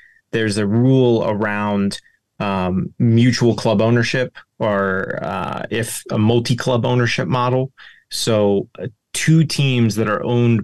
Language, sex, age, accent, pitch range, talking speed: English, male, 30-49, American, 100-120 Hz, 125 wpm